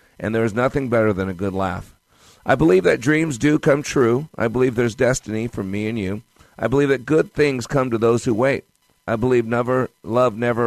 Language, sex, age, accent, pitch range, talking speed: English, male, 50-69, American, 110-140 Hz, 220 wpm